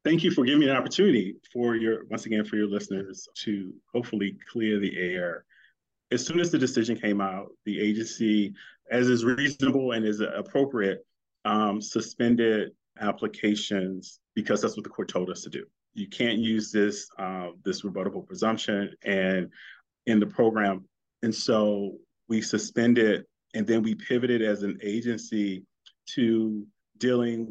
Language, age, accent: English, 30-49, American